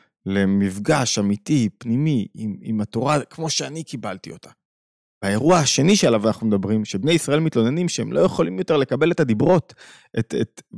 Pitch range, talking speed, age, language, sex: 110-160 Hz, 150 wpm, 30-49, Hebrew, male